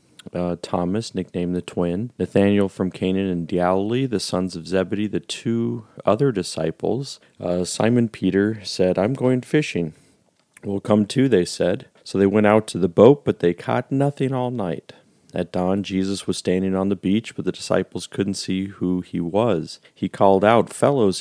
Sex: male